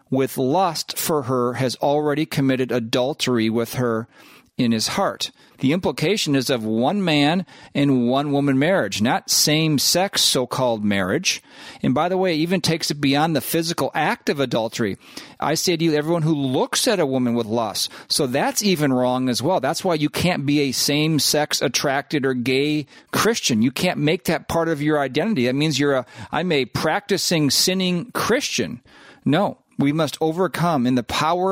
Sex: male